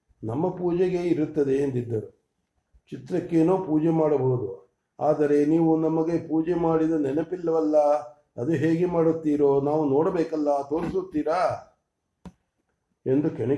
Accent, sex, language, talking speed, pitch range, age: Indian, male, English, 145 wpm, 135-160 Hz, 50-69